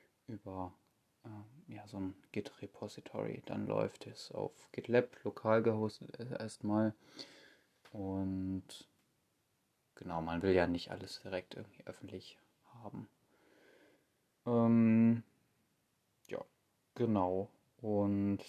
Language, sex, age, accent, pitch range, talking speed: German, male, 20-39, German, 95-110 Hz, 95 wpm